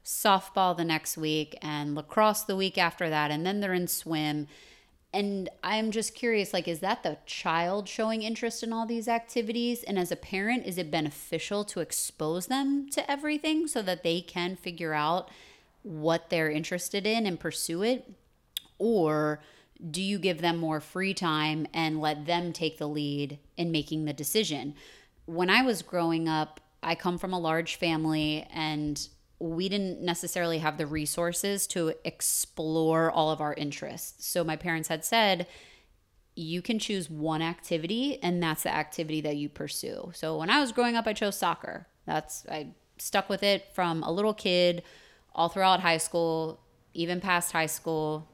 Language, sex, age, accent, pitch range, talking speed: English, female, 30-49, American, 155-190 Hz, 175 wpm